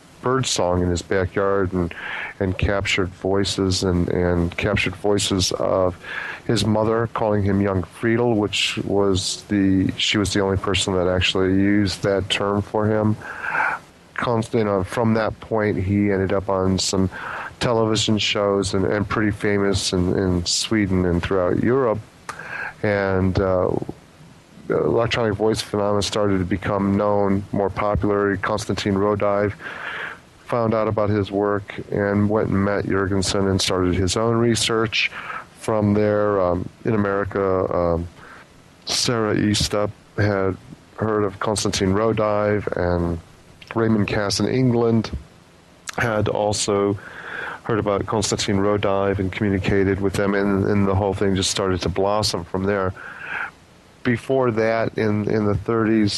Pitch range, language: 95-105 Hz, English